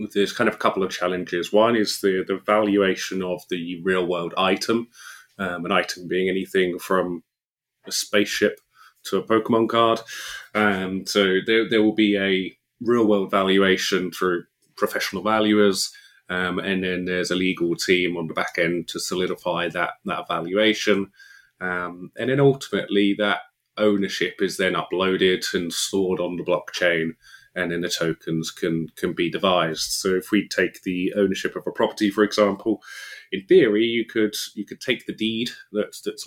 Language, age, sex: English, 30-49, male